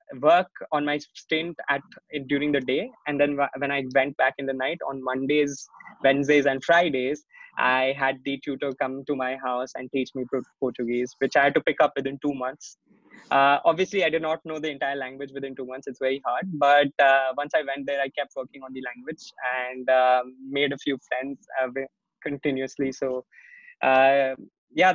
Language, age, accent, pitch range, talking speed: English, 20-39, Indian, 130-145 Hz, 200 wpm